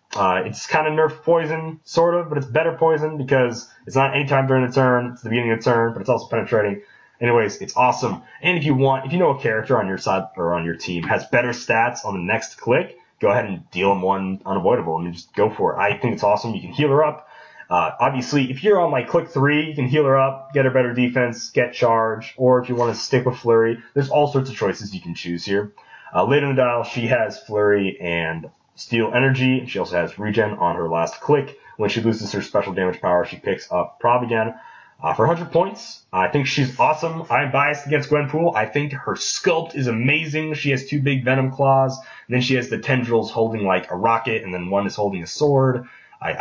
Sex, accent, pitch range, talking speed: male, American, 110-145 Hz, 240 wpm